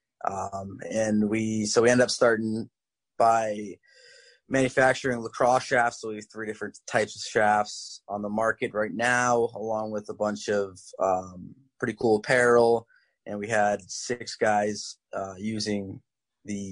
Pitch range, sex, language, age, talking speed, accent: 105-115 Hz, male, English, 20-39, 150 wpm, American